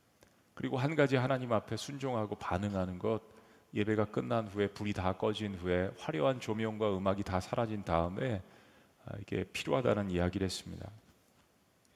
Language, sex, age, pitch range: Korean, male, 40-59, 105-155 Hz